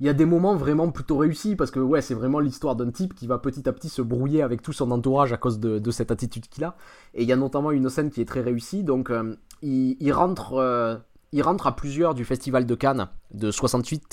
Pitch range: 125-170 Hz